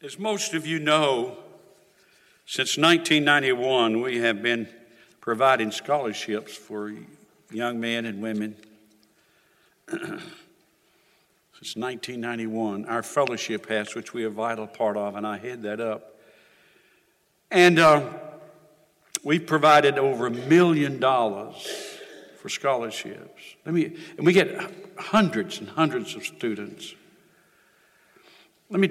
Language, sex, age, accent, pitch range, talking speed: English, male, 60-79, American, 115-155 Hz, 115 wpm